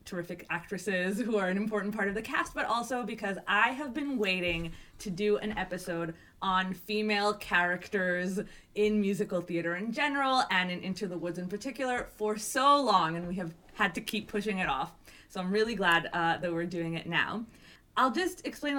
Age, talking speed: 20-39, 195 wpm